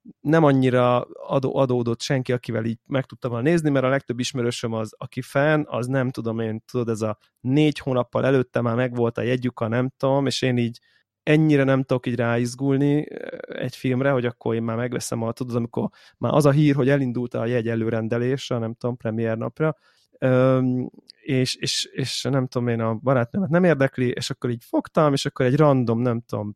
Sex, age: male, 20-39